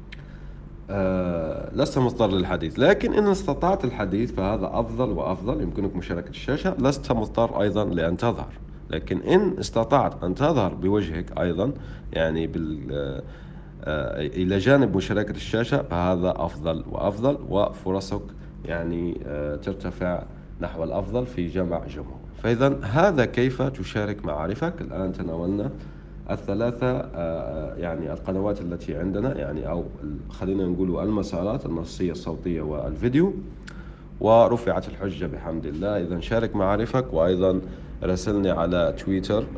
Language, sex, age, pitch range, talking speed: Arabic, male, 50-69, 85-110 Hz, 115 wpm